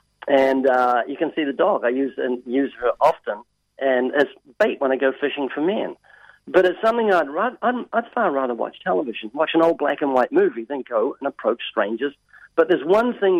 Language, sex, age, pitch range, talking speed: English, male, 50-69, 130-170 Hz, 205 wpm